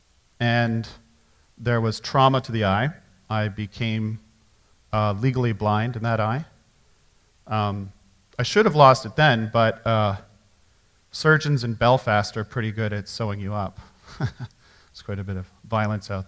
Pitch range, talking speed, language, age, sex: 105-125 Hz, 150 wpm, English, 40-59, male